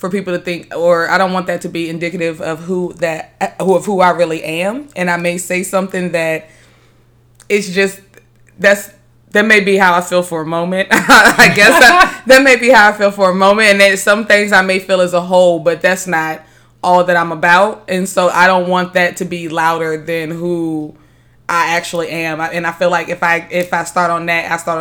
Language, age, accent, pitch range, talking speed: English, 20-39, American, 165-185 Hz, 230 wpm